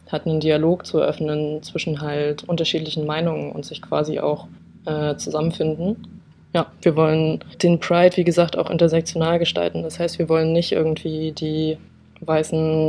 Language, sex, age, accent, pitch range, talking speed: German, female, 20-39, German, 150-160 Hz, 155 wpm